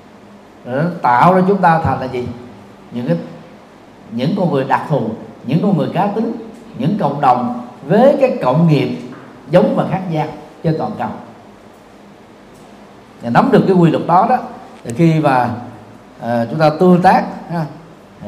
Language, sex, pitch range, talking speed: Vietnamese, male, 150-195 Hz, 165 wpm